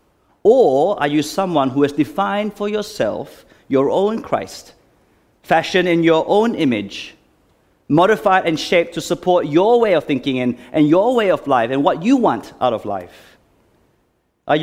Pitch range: 125-185 Hz